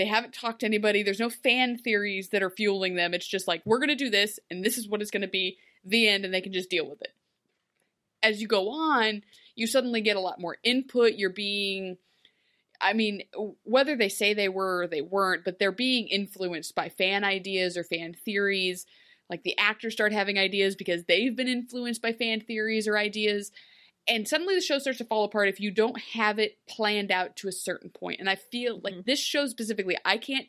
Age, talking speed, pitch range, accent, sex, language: 20-39, 225 wpm, 195-255 Hz, American, female, English